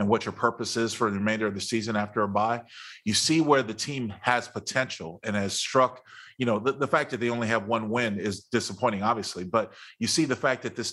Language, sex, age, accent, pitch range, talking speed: English, male, 30-49, American, 115-135 Hz, 245 wpm